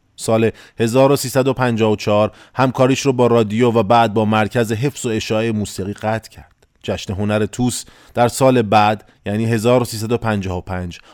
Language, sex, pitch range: Persian, male, 105-130 Hz